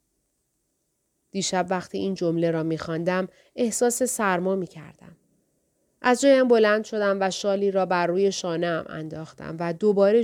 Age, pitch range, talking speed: 30-49, 175-225 Hz, 130 wpm